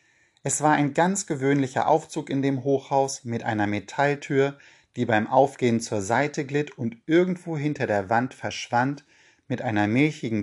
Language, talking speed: German, 155 wpm